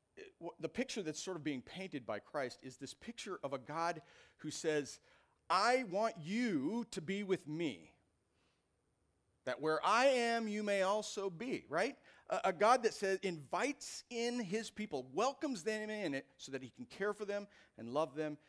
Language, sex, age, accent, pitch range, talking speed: English, male, 40-59, American, 125-195 Hz, 180 wpm